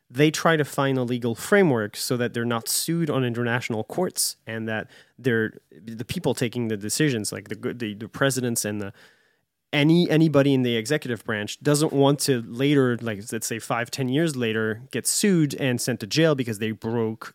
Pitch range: 115-150 Hz